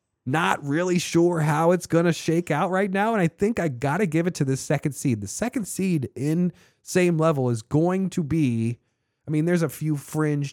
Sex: male